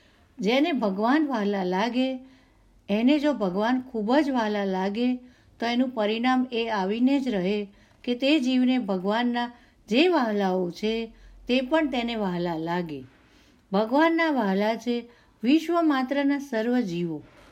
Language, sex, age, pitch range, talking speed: Gujarati, female, 50-69, 195-260 Hz, 125 wpm